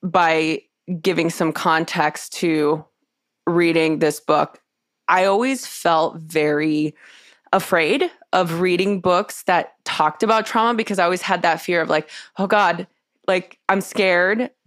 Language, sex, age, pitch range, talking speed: English, female, 20-39, 160-195 Hz, 135 wpm